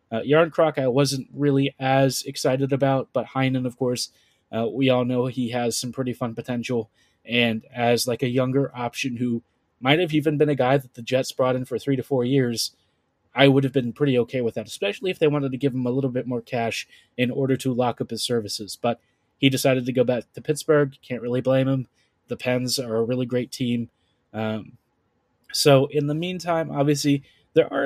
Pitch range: 125-145 Hz